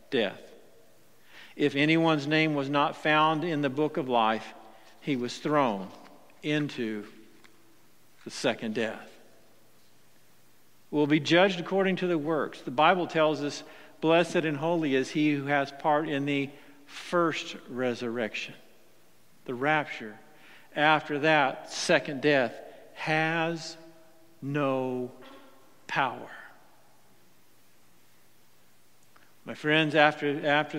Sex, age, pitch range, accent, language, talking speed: male, 50-69, 130-150 Hz, American, English, 105 wpm